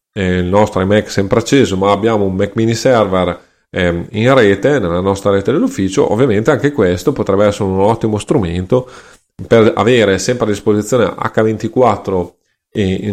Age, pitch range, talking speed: 30-49, 95-125 Hz, 145 wpm